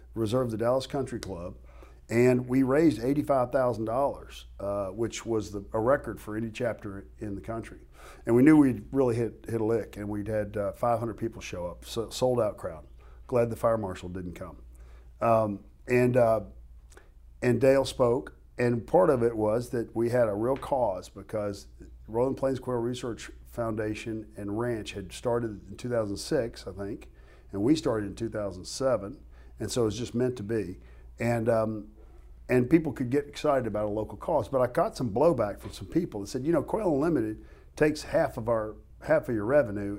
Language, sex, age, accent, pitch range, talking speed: English, male, 50-69, American, 100-125 Hz, 190 wpm